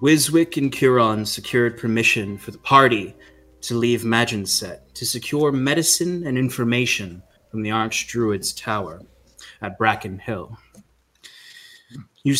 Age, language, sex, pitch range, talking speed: 30-49, English, male, 110-135 Hz, 115 wpm